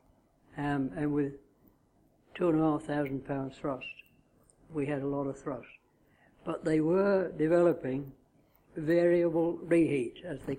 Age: 60-79